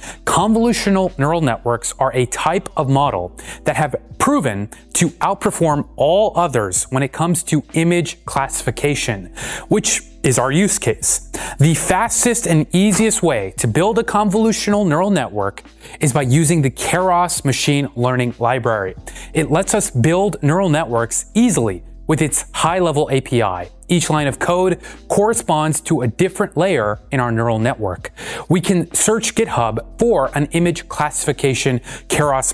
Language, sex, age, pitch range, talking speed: English, male, 30-49, 130-180 Hz, 145 wpm